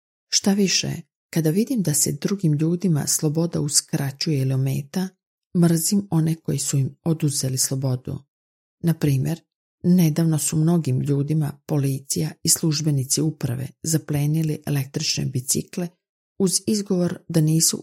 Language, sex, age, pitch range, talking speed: Croatian, female, 40-59, 140-170 Hz, 120 wpm